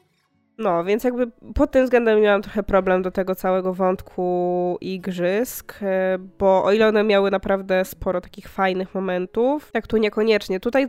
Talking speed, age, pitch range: 155 wpm, 20-39, 185-215 Hz